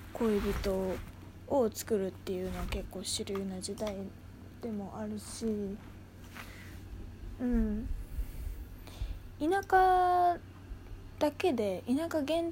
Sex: female